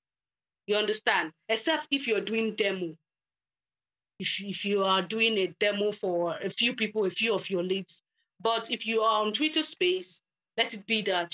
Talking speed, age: 180 wpm, 20-39